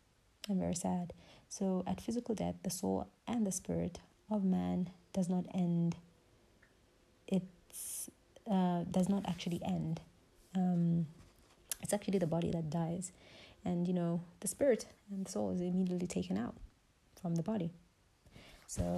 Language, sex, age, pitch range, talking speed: English, female, 30-49, 120-195 Hz, 145 wpm